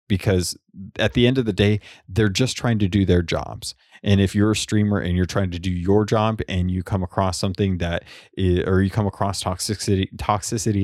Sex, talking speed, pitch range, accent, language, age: male, 210 wpm, 90-105 Hz, American, English, 30-49